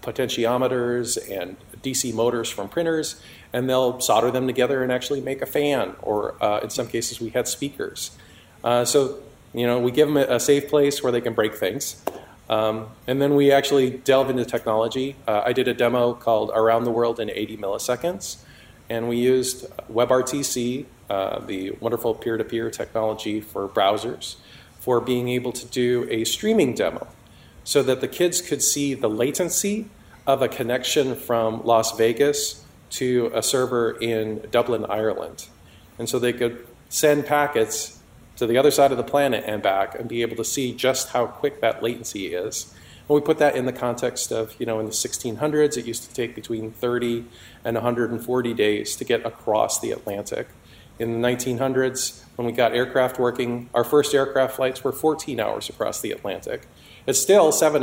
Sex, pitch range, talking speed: male, 115-135 Hz, 180 wpm